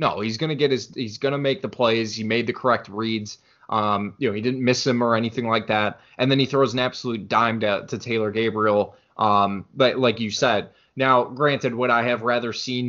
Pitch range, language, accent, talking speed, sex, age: 110-130 Hz, English, American, 240 wpm, male, 20-39